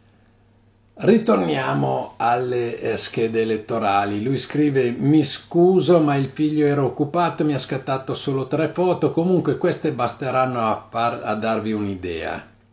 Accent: native